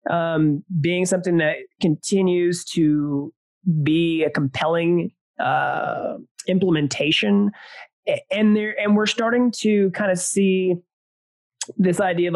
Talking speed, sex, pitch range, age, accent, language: 110 wpm, male, 145-195 Hz, 30-49, American, English